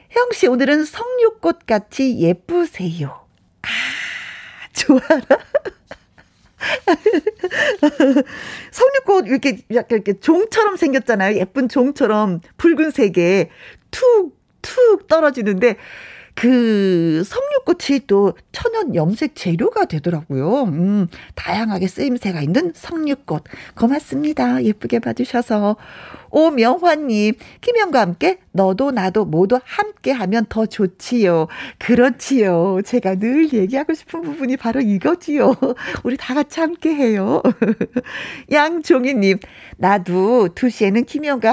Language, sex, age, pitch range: Korean, female, 40-59, 200-305 Hz